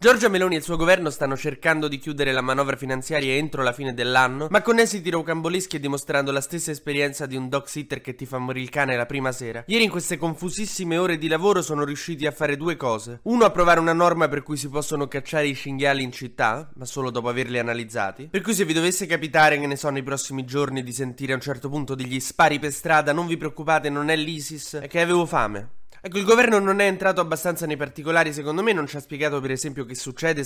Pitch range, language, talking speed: 135-170 Hz, Italian, 240 wpm